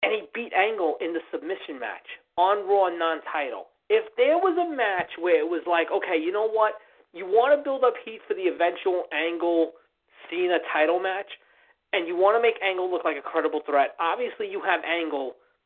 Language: English